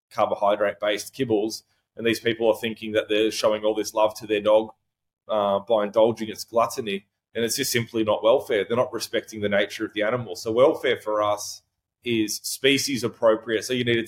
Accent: Australian